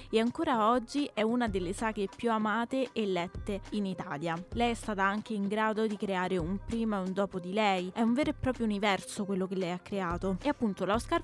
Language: Italian